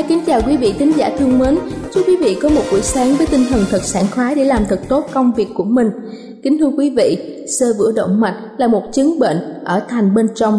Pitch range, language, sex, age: 210-280 Hz, Thai, female, 20-39